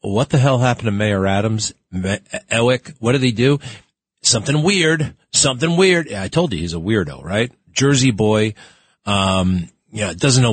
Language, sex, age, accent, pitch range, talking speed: English, male, 40-59, American, 95-130 Hz, 170 wpm